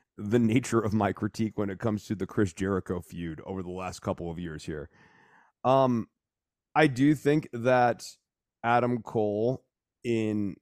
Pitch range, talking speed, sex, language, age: 100-130 Hz, 160 wpm, male, English, 30-49